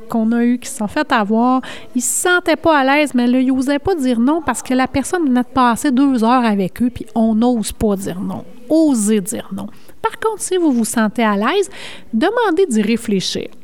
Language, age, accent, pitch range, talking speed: French, 30-49, Canadian, 210-270 Hz, 230 wpm